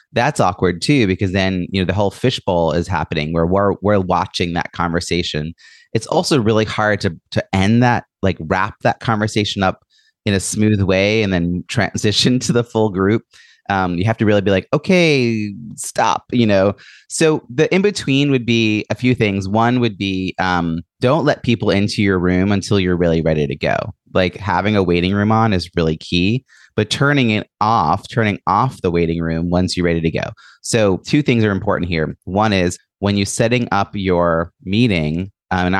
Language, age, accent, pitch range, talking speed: English, 30-49, American, 90-115 Hz, 195 wpm